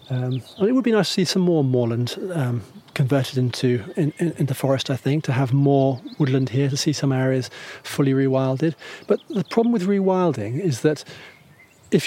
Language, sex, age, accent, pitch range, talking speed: English, male, 40-59, British, 130-160 Hz, 200 wpm